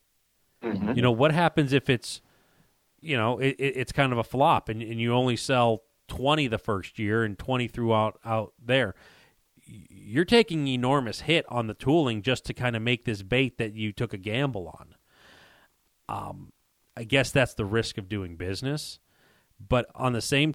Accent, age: American, 30-49